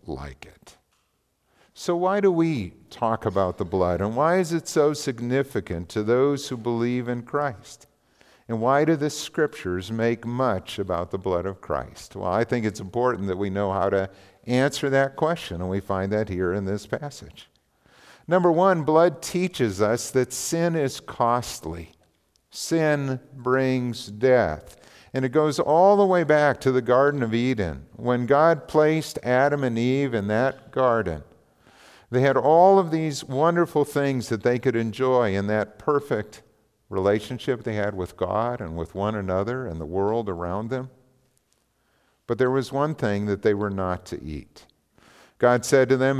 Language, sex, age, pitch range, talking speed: English, male, 50-69, 105-145 Hz, 170 wpm